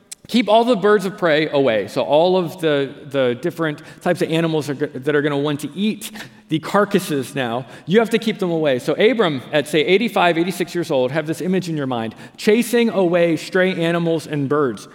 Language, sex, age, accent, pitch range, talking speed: English, male, 40-59, American, 155-210 Hz, 210 wpm